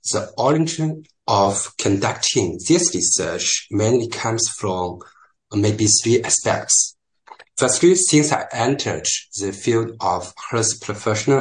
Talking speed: 110 wpm